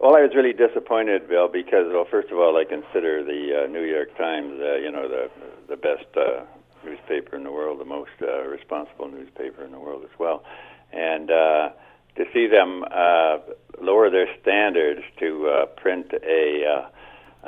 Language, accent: English, American